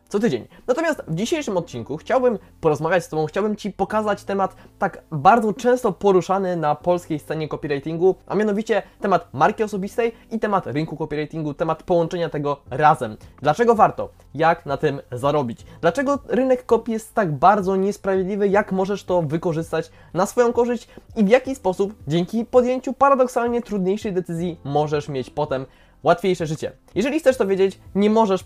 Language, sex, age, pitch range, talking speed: Polish, male, 20-39, 145-200 Hz, 160 wpm